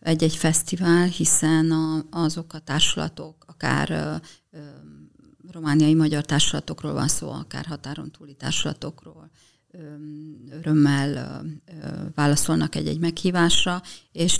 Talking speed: 85 wpm